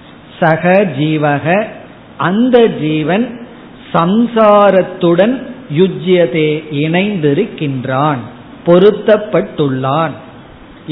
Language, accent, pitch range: Tamil, native, 150-195 Hz